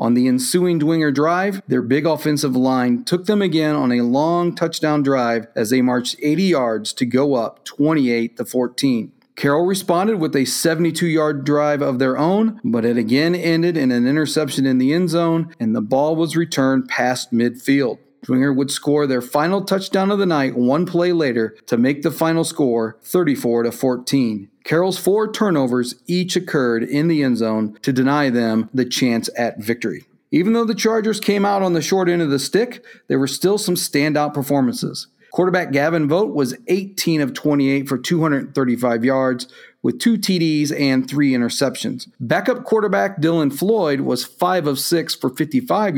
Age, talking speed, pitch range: 40-59, 170 wpm, 130-175 Hz